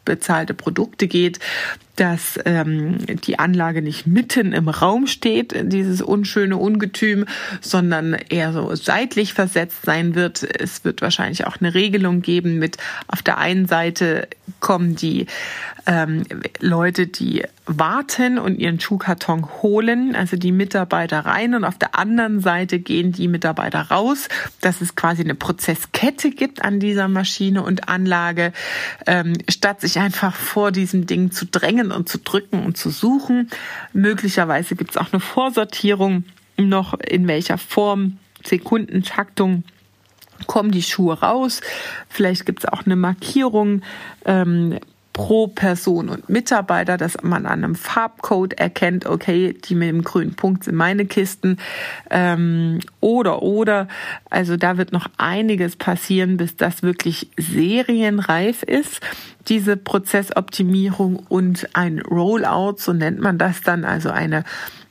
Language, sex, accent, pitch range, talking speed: German, female, German, 175-205 Hz, 140 wpm